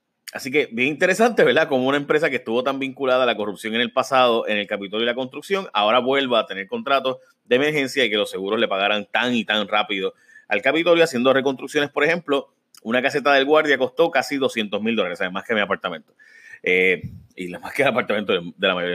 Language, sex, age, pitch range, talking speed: Spanish, male, 30-49, 115-165 Hz, 220 wpm